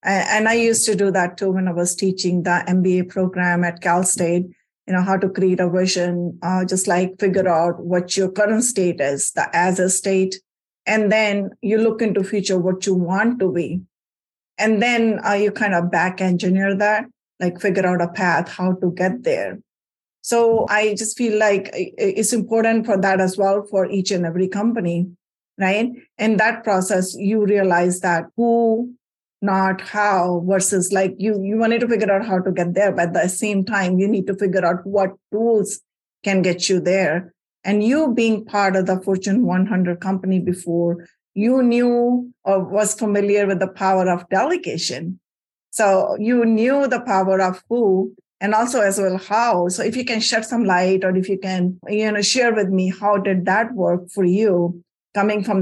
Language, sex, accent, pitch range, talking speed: English, female, Indian, 180-215 Hz, 190 wpm